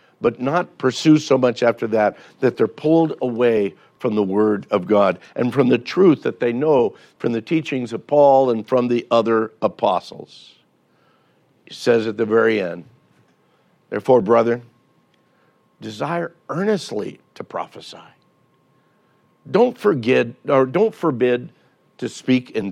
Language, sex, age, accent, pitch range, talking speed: English, male, 60-79, American, 110-140 Hz, 130 wpm